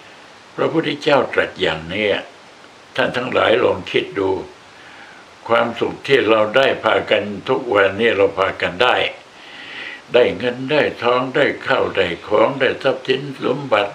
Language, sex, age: Thai, male, 60-79